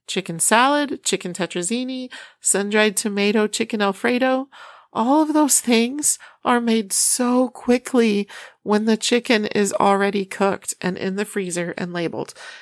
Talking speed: 135 wpm